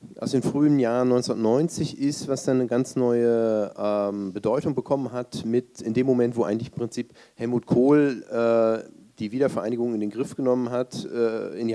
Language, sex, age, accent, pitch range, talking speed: German, male, 40-59, German, 110-130 Hz, 185 wpm